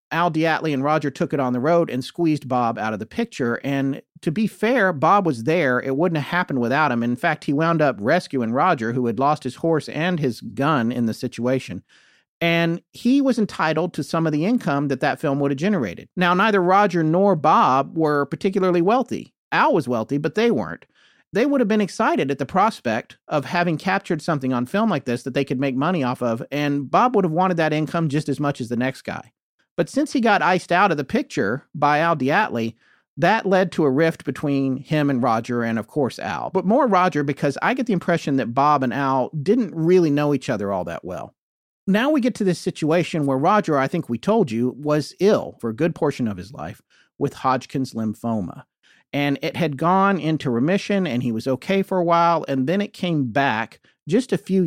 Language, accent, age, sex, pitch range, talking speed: English, American, 40-59, male, 130-180 Hz, 225 wpm